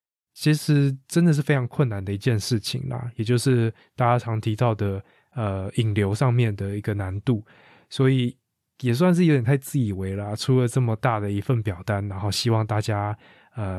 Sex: male